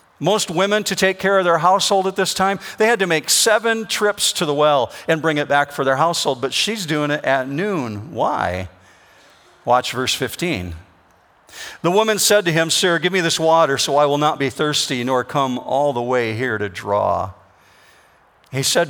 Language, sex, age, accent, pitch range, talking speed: English, male, 50-69, American, 115-165 Hz, 200 wpm